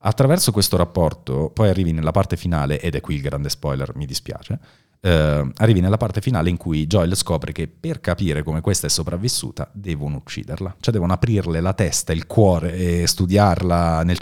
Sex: male